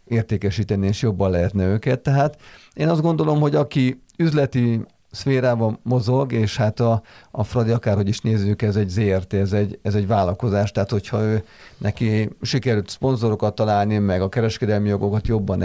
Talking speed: 155 wpm